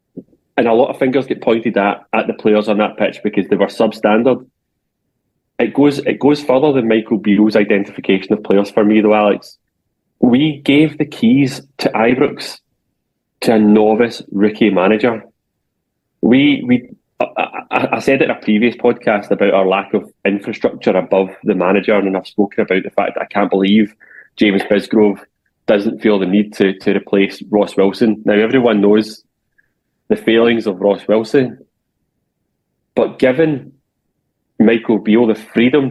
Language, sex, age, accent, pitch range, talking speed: English, male, 20-39, British, 105-125 Hz, 160 wpm